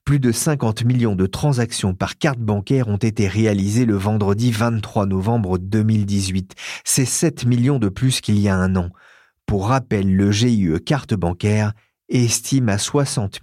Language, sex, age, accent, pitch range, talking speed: French, male, 40-59, French, 100-130 Hz, 160 wpm